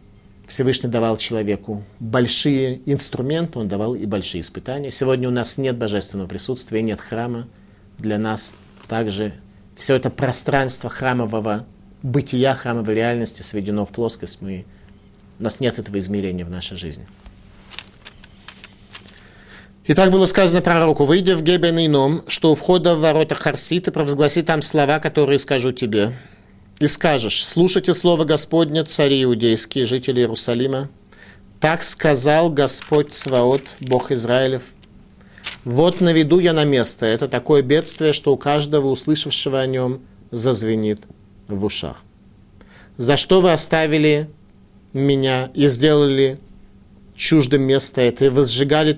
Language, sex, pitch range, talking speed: Russian, male, 105-145 Hz, 125 wpm